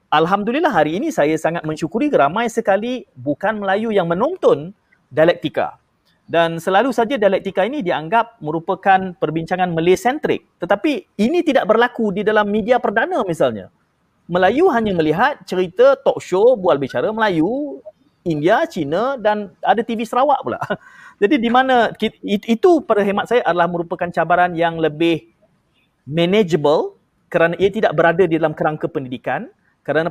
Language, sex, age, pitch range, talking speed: Malay, male, 40-59, 170-230 Hz, 140 wpm